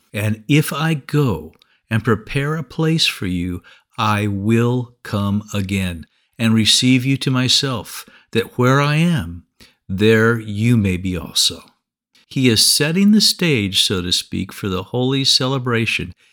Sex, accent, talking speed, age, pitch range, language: male, American, 145 wpm, 50-69, 105-150 Hz, English